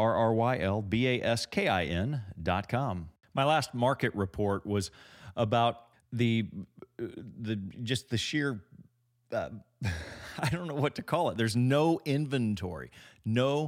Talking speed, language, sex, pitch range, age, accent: 155 wpm, English, male, 105-140 Hz, 40-59, American